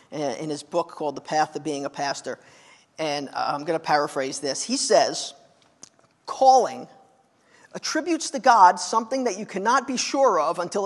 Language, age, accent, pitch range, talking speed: English, 40-59, American, 180-255 Hz, 165 wpm